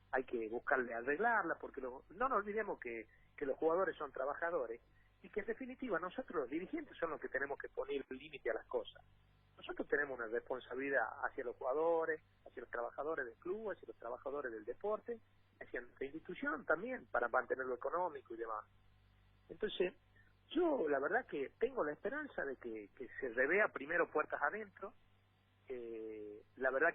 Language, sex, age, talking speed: Spanish, male, 40-59, 170 wpm